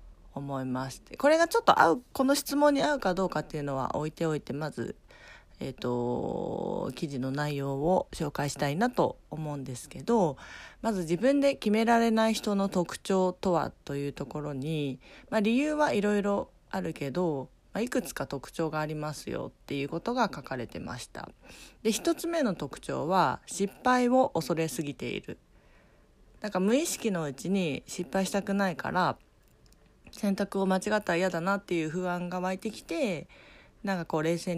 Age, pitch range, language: 40-59, 145-210 Hz, Japanese